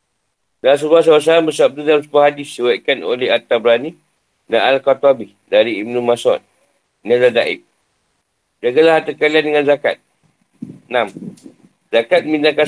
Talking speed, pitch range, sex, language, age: 125 wpm, 130-150 Hz, male, Malay, 50-69